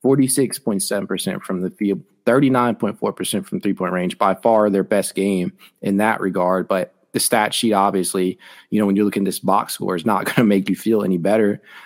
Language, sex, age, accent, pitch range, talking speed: English, male, 30-49, American, 95-115 Hz, 205 wpm